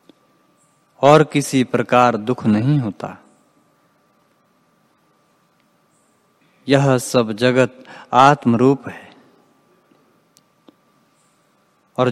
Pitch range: 125-150 Hz